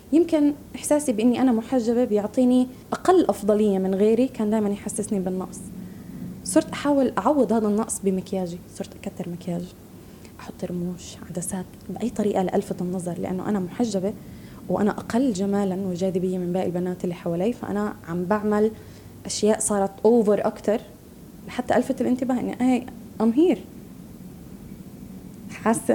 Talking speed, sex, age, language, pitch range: 130 wpm, female, 20-39, Arabic, 195-240 Hz